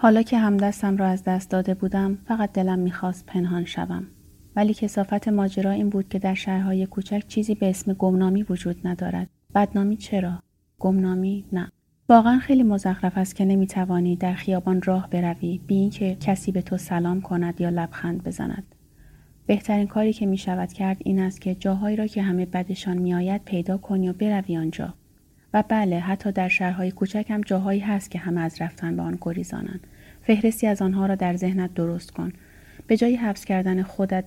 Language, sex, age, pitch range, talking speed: Persian, female, 30-49, 180-205 Hz, 175 wpm